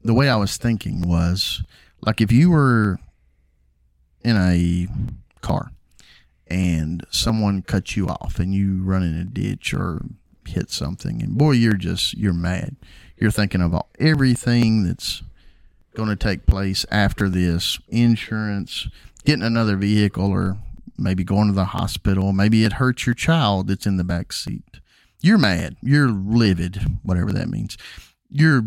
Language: English